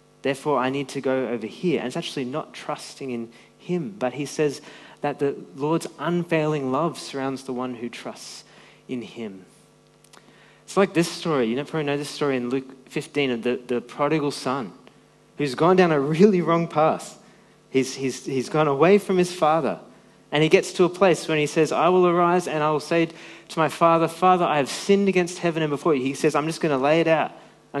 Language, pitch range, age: English, 140-170 Hz, 30-49